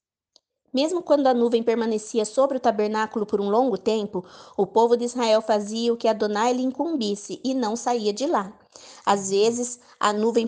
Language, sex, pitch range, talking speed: Portuguese, female, 210-260 Hz, 180 wpm